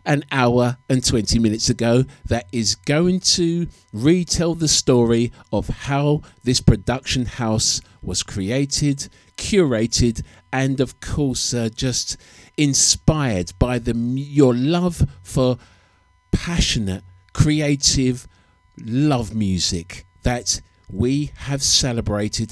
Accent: British